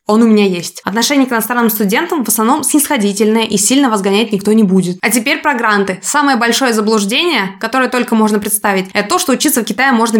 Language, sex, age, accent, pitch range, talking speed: Russian, female, 20-39, native, 210-265 Hz, 205 wpm